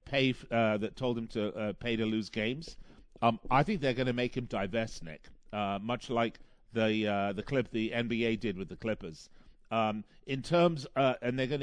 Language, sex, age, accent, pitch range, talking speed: English, male, 50-69, British, 115-160 Hz, 205 wpm